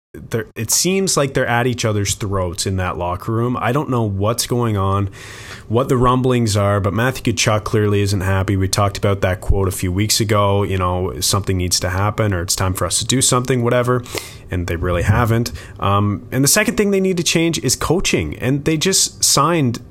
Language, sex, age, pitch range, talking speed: English, male, 20-39, 100-125 Hz, 215 wpm